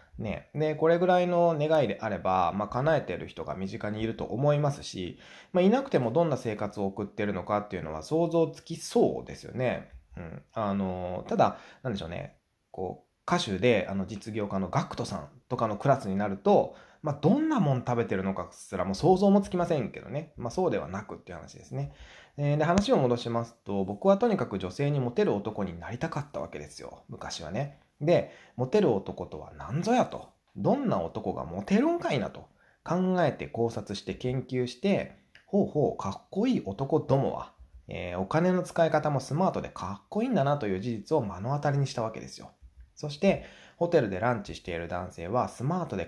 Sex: male